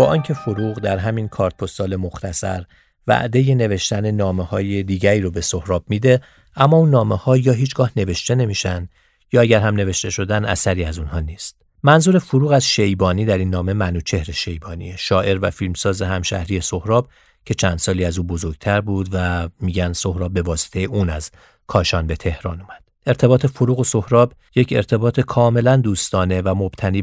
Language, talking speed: Persian, 165 wpm